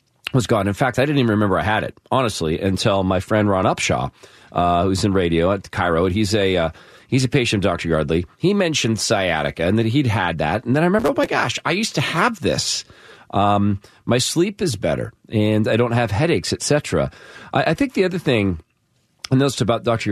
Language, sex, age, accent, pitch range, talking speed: English, male, 40-59, American, 95-125 Hz, 220 wpm